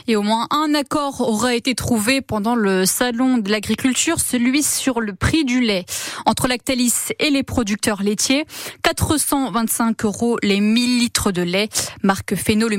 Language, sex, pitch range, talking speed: French, female, 205-270 Hz, 165 wpm